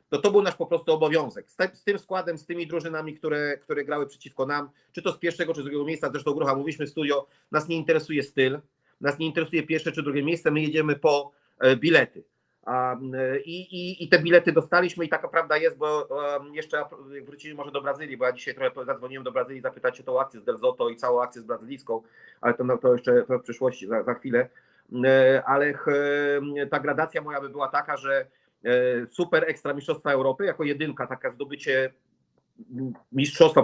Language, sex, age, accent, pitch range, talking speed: English, male, 40-59, Polish, 135-165 Hz, 205 wpm